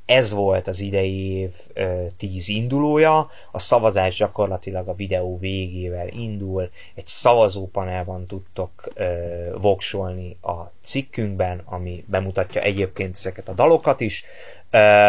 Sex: male